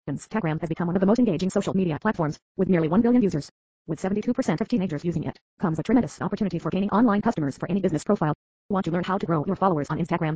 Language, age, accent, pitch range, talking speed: English, 30-49, American, 165-210 Hz, 255 wpm